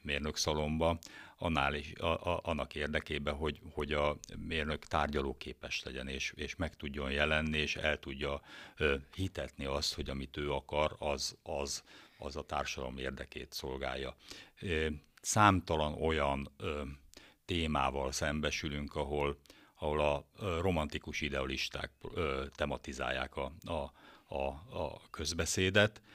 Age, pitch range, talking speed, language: 60-79, 70-85 Hz, 125 wpm, Hungarian